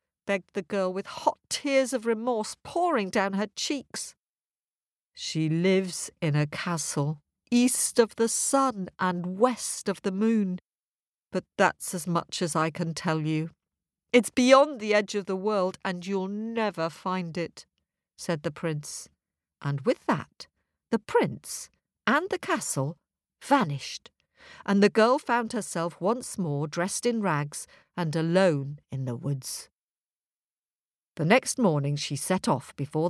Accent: British